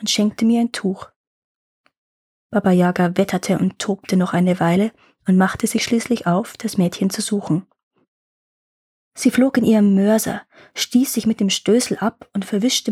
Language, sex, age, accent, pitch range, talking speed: German, female, 20-39, German, 200-235 Hz, 165 wpm